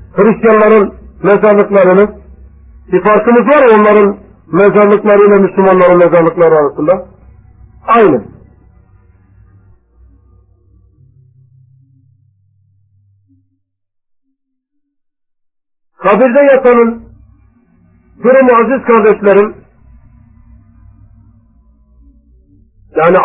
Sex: male